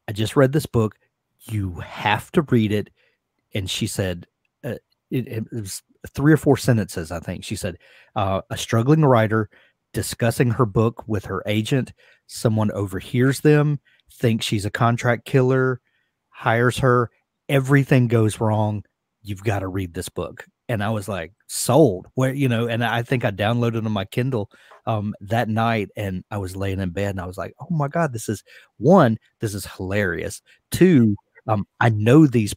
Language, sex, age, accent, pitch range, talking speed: English, male, 30-49, American, 100-125 Hz, 180 wpm